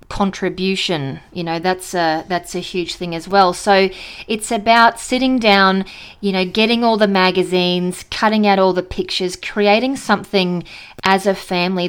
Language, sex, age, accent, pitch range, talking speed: English, female, 30-49, Australian, 180-205 Hz, 160 wpm